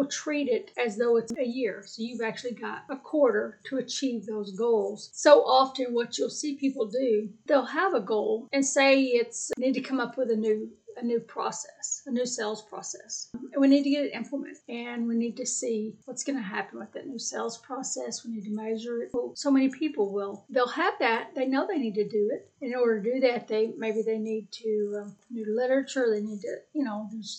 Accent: American